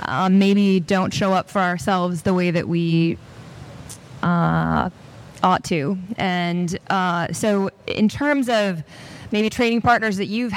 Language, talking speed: English, 140 wpm